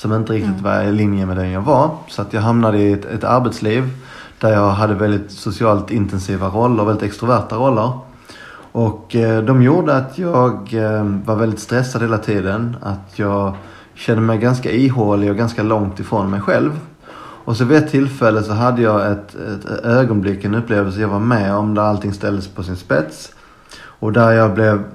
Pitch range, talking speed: 100-120 Hz, 190 wpm